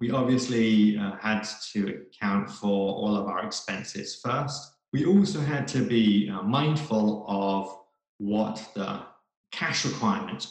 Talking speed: 135 wpm